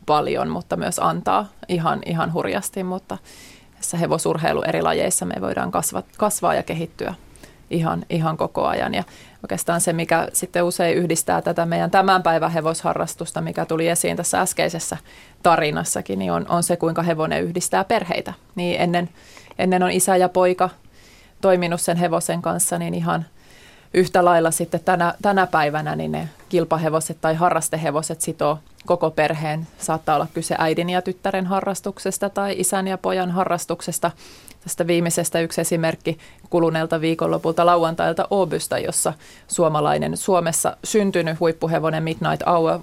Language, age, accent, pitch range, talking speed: Finnish, 20-39, native, 160-180 Hz, 140 wpm